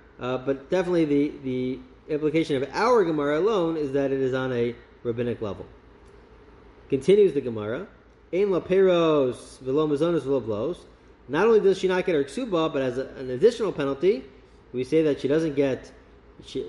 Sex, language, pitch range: male, English, 135-190 Hz